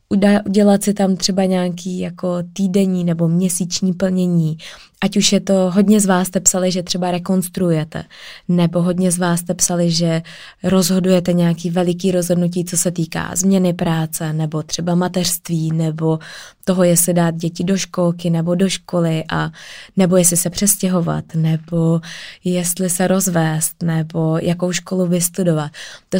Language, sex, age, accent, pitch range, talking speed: Czech, female, 20-39, native, 170-190 Hz, 150 wpm